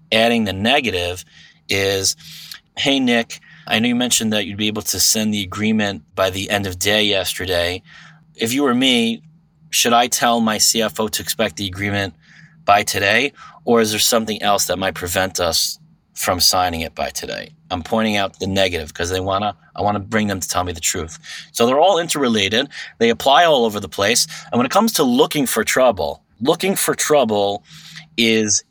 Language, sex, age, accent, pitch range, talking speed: English, male, 30-49, American, 95-125 Hz, 190 wpm